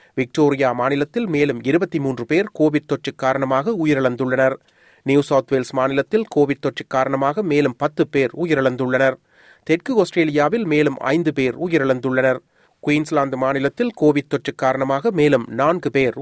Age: 30-49